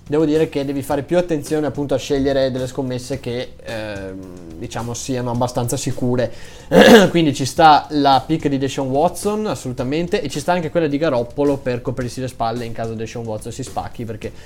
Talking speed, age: 185 wpm, 20-39